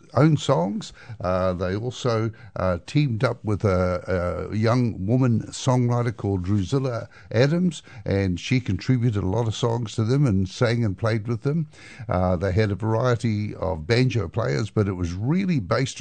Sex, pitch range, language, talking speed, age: male, 100-125 Hz, English, 170 wpm, 60-79